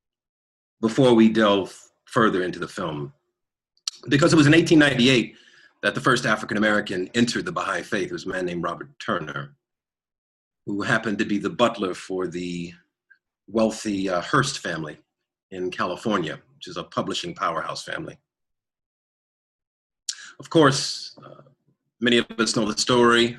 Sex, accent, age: male, American, 40-59